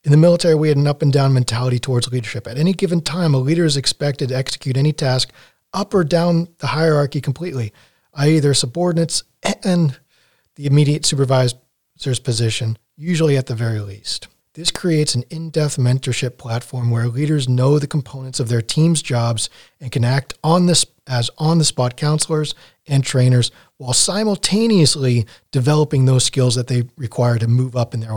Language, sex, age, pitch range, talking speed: English, male, 40-59, 125-155 Hz, 170 wpm